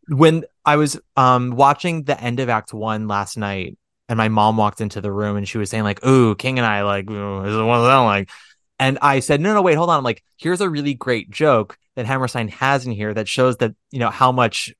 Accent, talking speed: American, 240 wpm